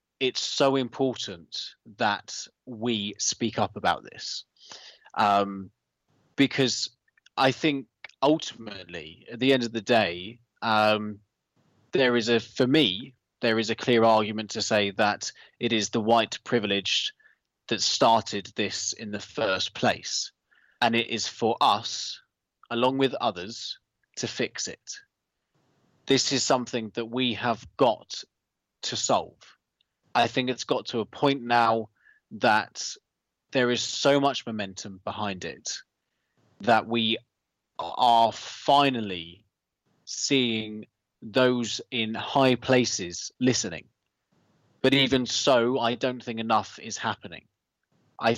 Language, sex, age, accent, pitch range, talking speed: English, male, 20-39, British, 110-130 Hz, 125 wpm